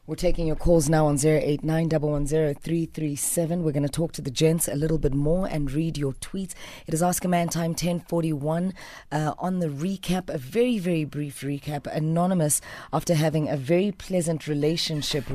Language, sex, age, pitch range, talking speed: English, female, 30-49, 145-175 Hz, 185 wpm